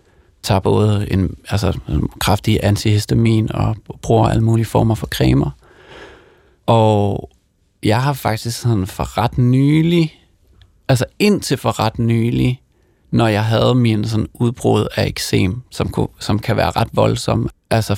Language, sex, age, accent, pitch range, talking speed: Danish, male, 30-49, native, 105-120 Hz, 145 wpm